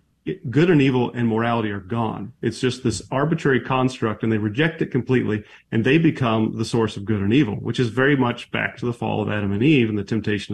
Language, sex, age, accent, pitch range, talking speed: English, male, 40-59, American, 110-135 Hz, 235 wpm